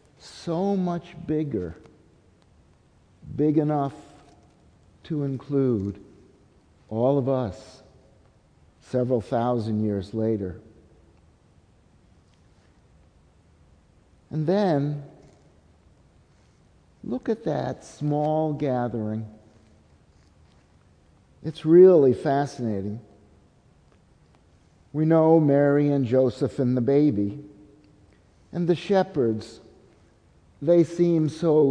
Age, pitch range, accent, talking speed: 50-69, 100-150 Hz, American, 70 wpm